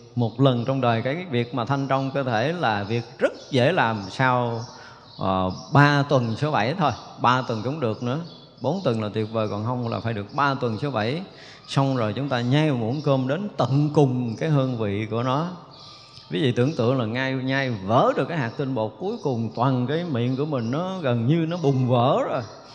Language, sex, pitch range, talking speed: Vietnamese, male, 125-160 Hz, 220 wpm